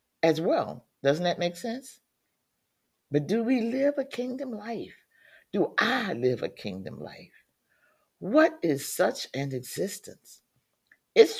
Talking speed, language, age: 130 wpm, English, 60-79